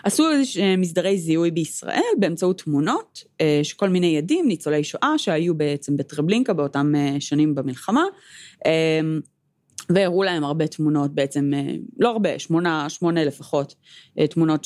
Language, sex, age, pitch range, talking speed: Hebrew, female, 20-39, 150-210 Hz, 120 wpm